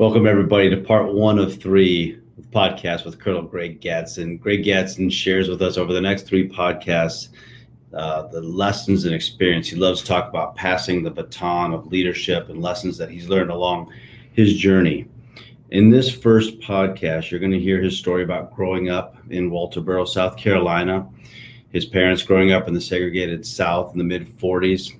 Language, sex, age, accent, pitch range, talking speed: English, male, 30-49, American, 90-110 Hz, 180 wpm